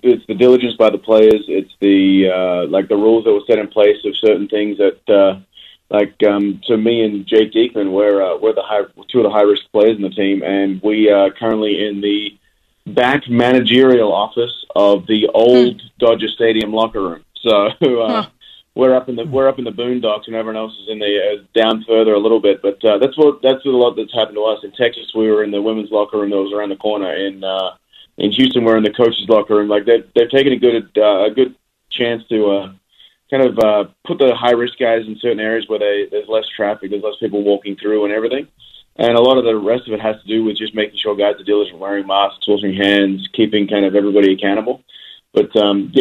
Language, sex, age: English, male, 30-49